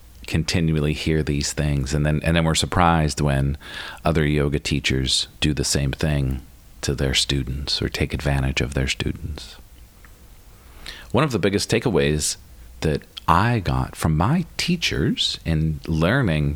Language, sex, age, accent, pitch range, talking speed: English, male, 40-59, American, 70-95 Hz, 145 wpm